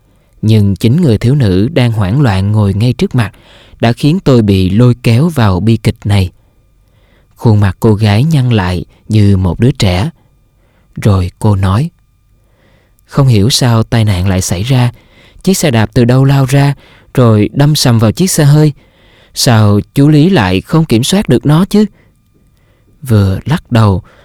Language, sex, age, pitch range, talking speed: Vietnamese, male, 20-39, 100-130 Hz, 175 wpm